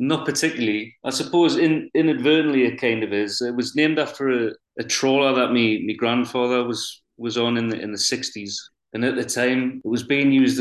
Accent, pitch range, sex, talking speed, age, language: British, 105-125 Hz, male, 205 wpm, 30-49, English